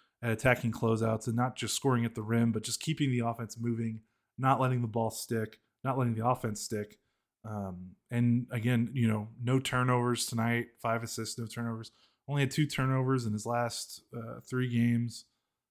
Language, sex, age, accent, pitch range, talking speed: English, male, 20-39, American, 110-125 Hz, 185 wpm